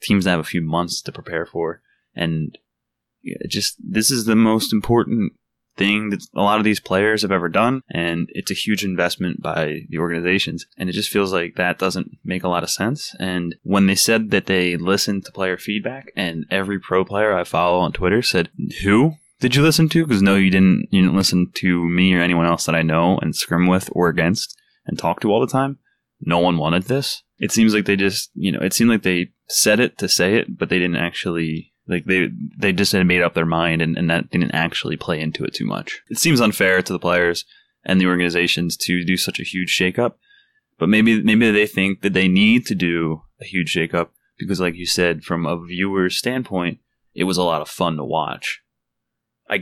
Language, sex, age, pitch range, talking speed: English, male, 20-39, 85-110 Hz, 225 wpm